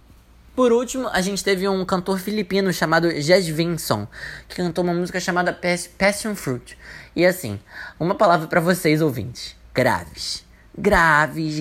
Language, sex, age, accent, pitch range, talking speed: Portuguese, male, 20-39, Brazilian, 165-205 Hz, 140 wpm